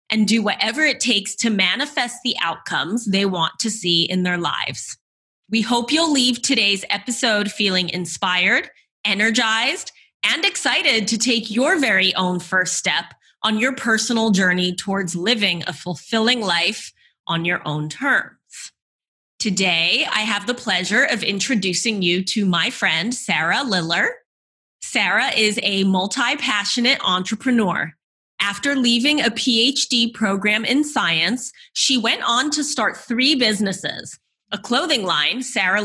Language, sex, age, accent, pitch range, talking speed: English, female, 20-39, American, 185-245 Hz, 140 wpm